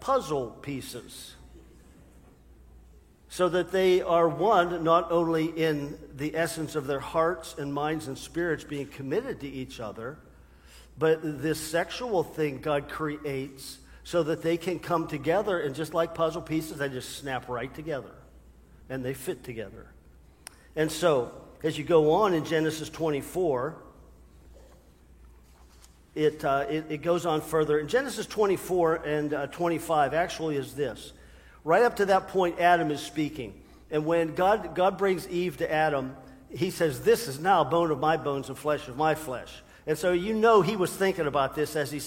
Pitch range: 135-170 Hz